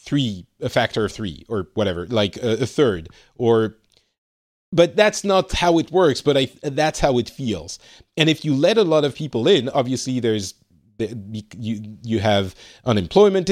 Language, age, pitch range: English, 40-59, 105-145 Hz